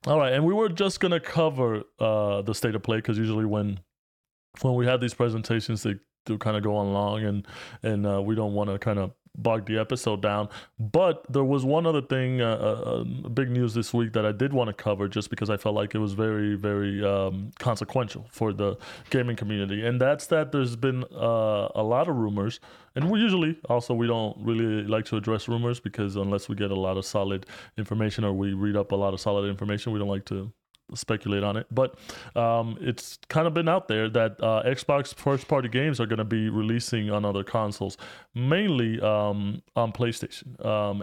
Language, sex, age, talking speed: English, male, 20-39, 220 wpm